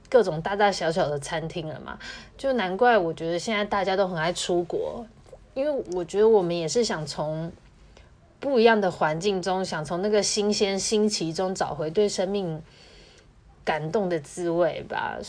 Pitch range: 160-210 Hz